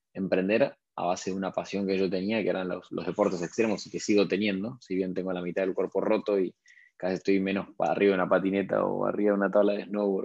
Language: Spanish